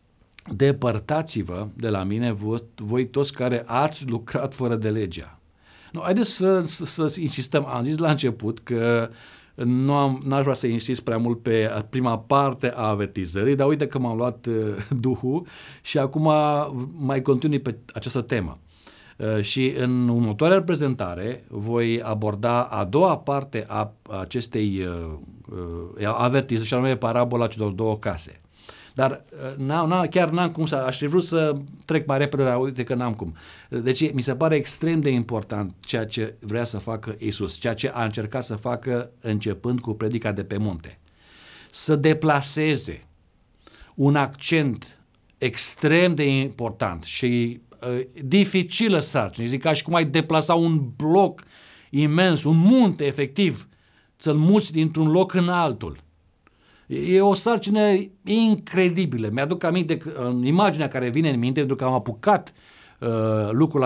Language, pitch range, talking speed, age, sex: Romanian, 110-155 Hz, 155 wpm, 50-69, male